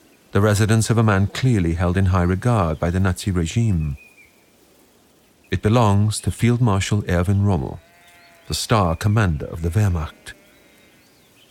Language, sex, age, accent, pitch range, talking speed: English, male, 40-59, British, 90-135 Hz, 140 wpm